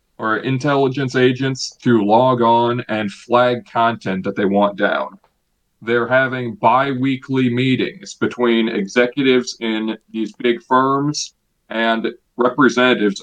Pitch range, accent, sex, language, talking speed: 115-130 Hz, American, male, English, 115 wpm